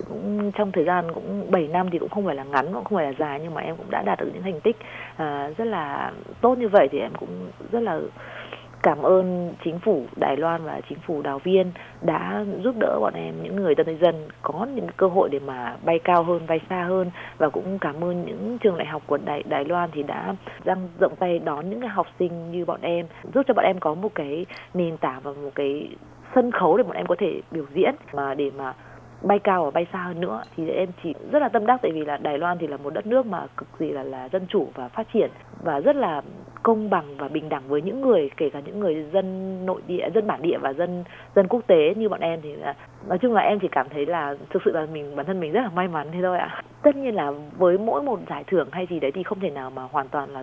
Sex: female